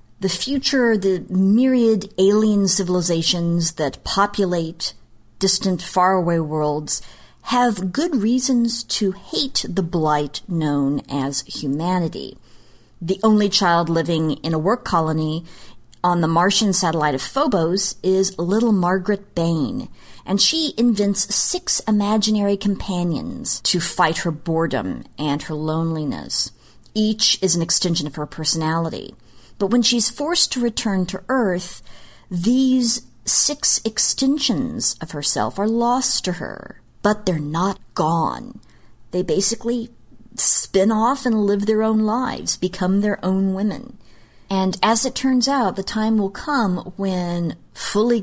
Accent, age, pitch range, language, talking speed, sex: American, 40-59, 165-220 Hz, English, 130 wpm, female